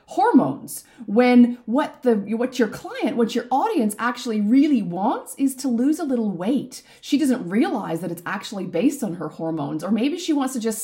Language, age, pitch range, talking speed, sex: English, 30-49, 205-260 Hz, 195 wpm, female